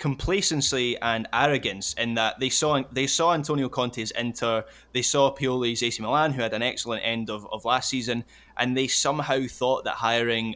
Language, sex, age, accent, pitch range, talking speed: English, male, 20-39, British, 115-135 Hz, 180 wpm